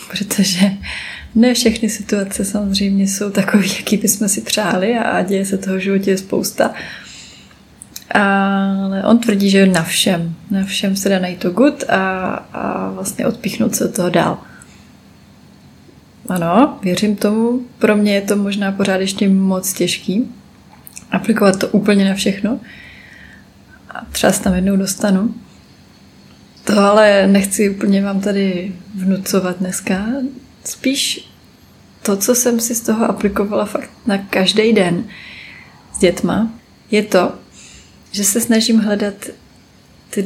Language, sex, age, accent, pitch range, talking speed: Czech, female, 20-39, native, 190-215 Hz, 135 wpm